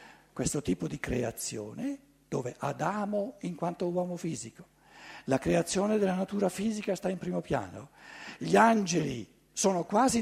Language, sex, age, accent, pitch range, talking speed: Italian, male, 60-79, native, 140-195 Hz, 135 wpm